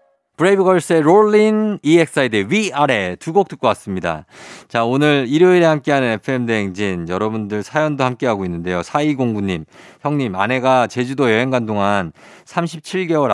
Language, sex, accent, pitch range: Korean, male, native, 95-155 Hz